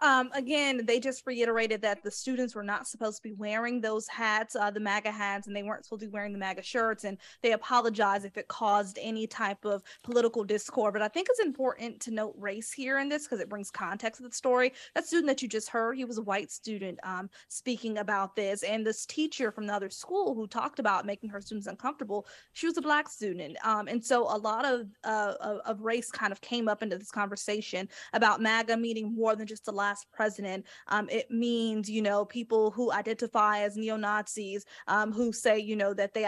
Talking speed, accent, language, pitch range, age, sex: 225 wpm, American, English, 205-235 Hz, 20-39, female